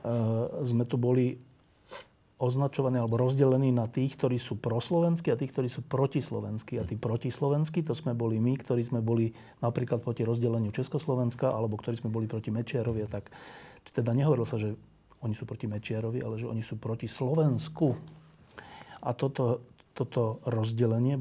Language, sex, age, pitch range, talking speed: Slovak, male, 40-59, 115-140 Hz, 160 wpm